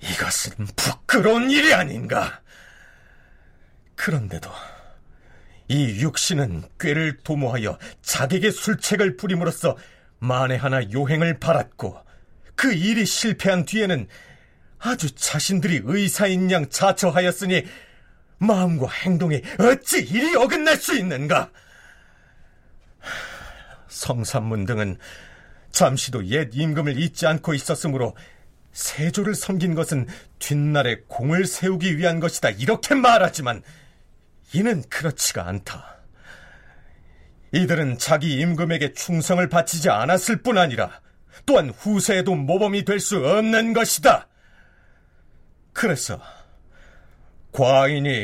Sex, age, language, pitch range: male, 40-59, Korean, 135-190 Hz